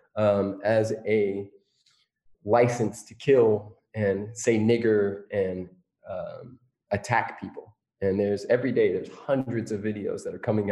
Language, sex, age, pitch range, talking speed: English, male, 20-39, 105-145 Hz, 135 wpm